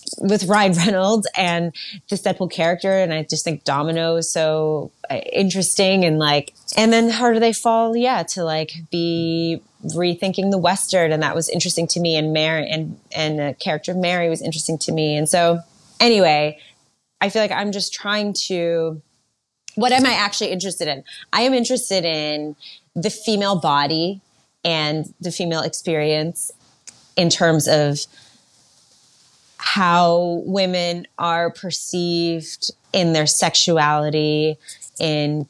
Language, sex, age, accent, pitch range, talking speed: English, female, 20-39, American, 155-190 Hz, 145 wpm